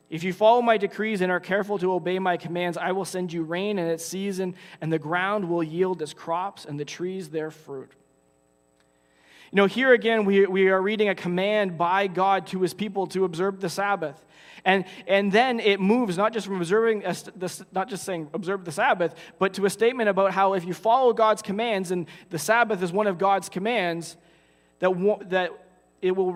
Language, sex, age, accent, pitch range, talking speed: English, male, 20-39, American, 175-210 Hz, 205 wpm